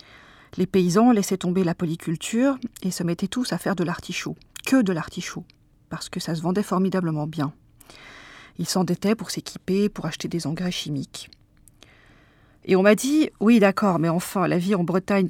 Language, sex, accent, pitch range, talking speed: French, female, French, 170-205 Hz, 175 wpm